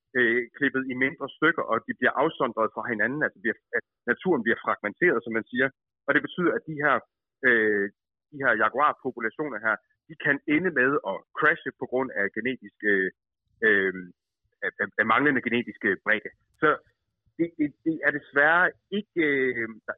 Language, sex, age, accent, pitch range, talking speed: Danish, male, 30-49, native, 120-170 Hz, 165 wpm